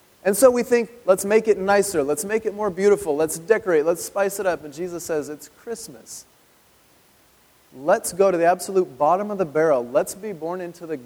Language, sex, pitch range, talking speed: English, male, 150-205 Hz, 205 wpm